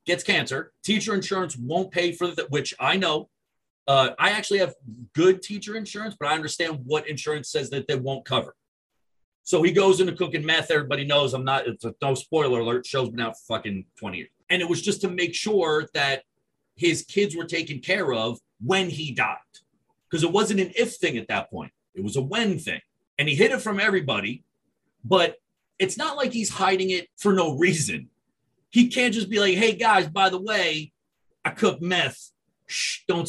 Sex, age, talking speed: male, 40-59, 200 wpm